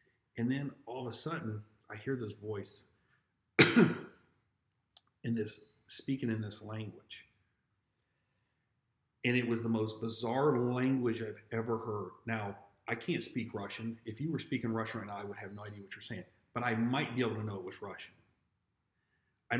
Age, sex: 40-59, male